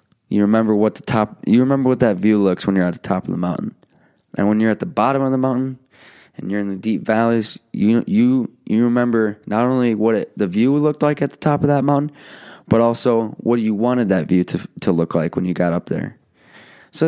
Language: English